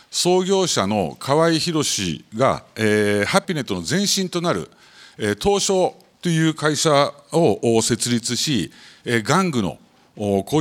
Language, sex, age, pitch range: Japanese, male, 50-69, 105-165 Hz